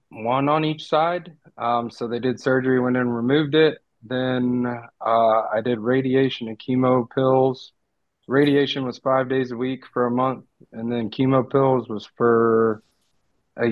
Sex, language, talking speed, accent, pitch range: male, English, 165 wpm, American, 115-140 Hz